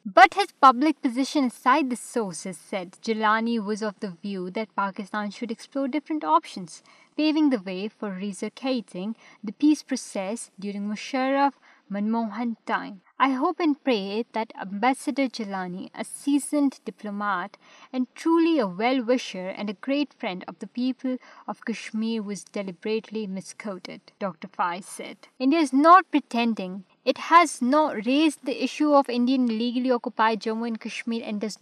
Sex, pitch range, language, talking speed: female, 210-275 Hz, Urdu, 150 wpm